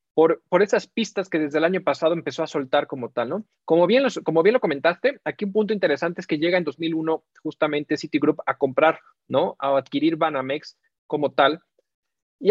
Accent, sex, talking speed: Mexican, male, 200 wpm